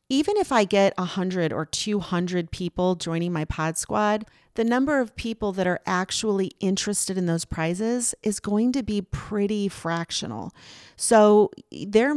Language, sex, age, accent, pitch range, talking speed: English, female, 40-59, American, 165-205 Hz, 155 wpm